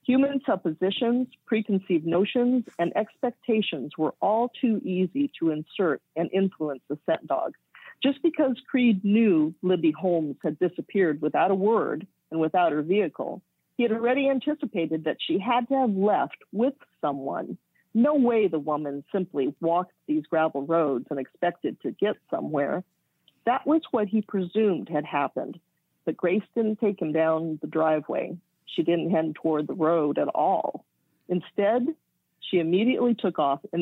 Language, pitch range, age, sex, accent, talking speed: English, 160-230 Hz, 50-69, female, American, 155 wpm